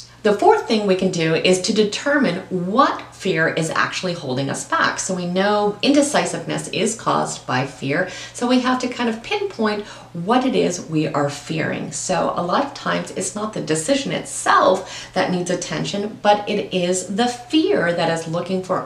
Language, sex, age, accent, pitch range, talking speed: English, female, 40-59, American, 150-215 Hz, 190 wpm